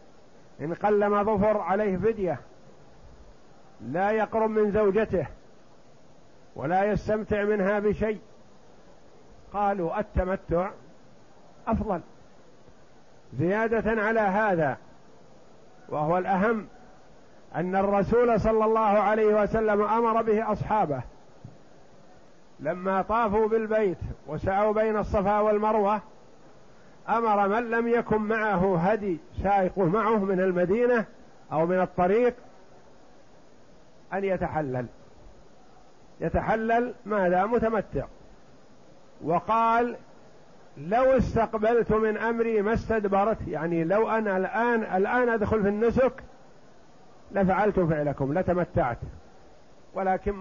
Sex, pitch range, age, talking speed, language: male, 190-220 Hz, 50-69, 90 wpm, Arabic